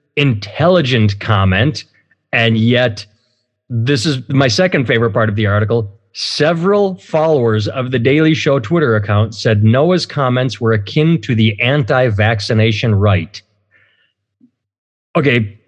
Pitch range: 110-155 Hz